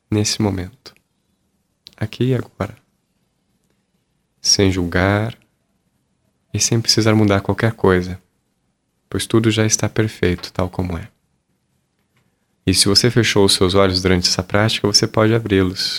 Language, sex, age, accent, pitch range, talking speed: Portuguese, male, 20-39, Brazilian, 95-110 Hz, 130 wpm